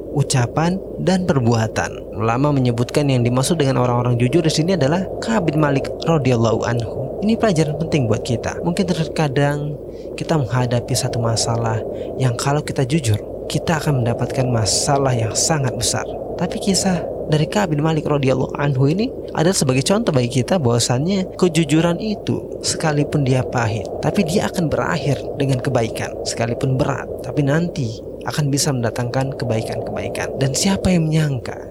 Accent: native